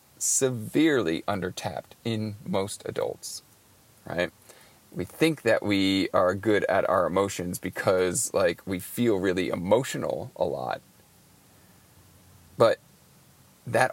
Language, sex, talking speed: English, male, 110 wpm